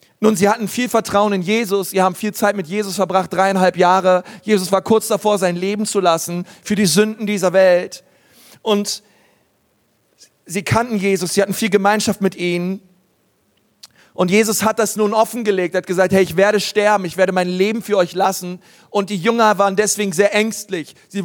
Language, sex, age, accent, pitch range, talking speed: German, male, 40-59, German, 195-225 Hz, 185 wpm